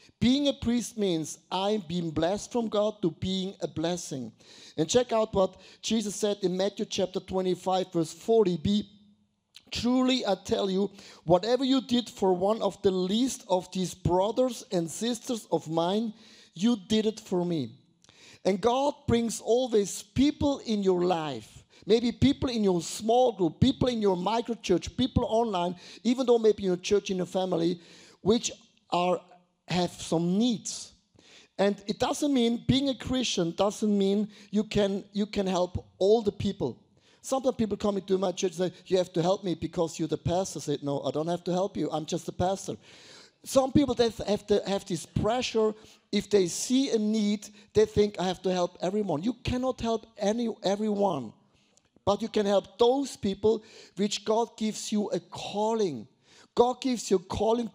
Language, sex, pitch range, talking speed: English, male, 180-225 Hz, 180 wpm